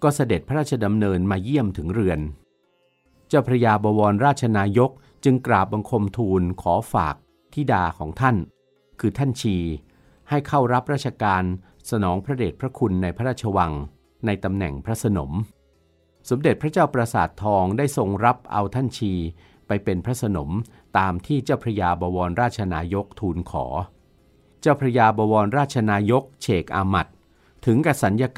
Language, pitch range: Thai, 90-120 Hz